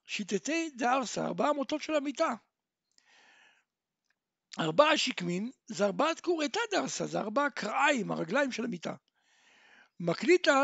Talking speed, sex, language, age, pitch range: 105 wpm, male, Hebrew, 60-79, 220-325 Hz